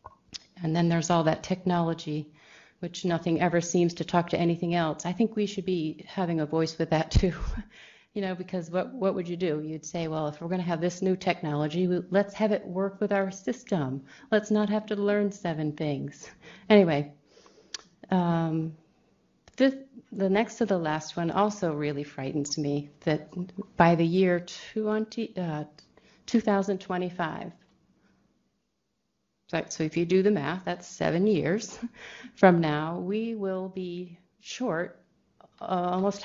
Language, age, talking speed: English, 40-59, 155 wpm